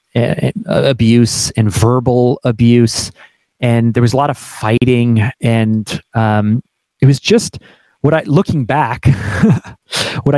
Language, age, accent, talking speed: English, 30-49, American, 125 wpm